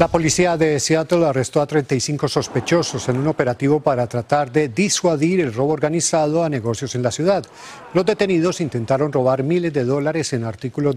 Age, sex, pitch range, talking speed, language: 50-69, male, 135-185 Hz, 175 wpm, Spanish